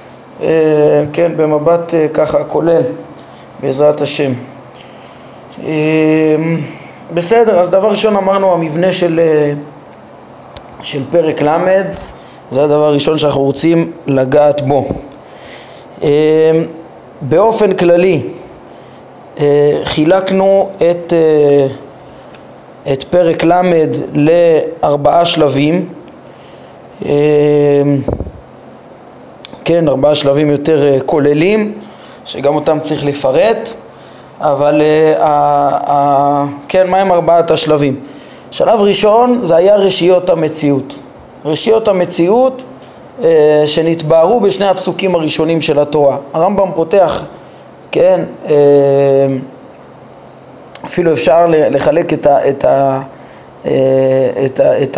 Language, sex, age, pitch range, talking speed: Hebrew, male, 20-39, 145-170 Hz, 90 wpm